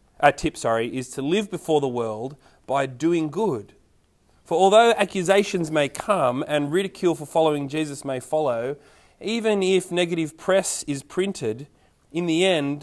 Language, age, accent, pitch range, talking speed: English, 30-49, Australian, 130-185 Hz, 155 wpm